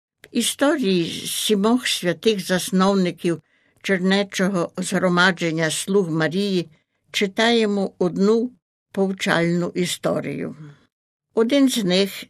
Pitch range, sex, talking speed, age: 175-210 Hz, female, 75 wpm, 60-79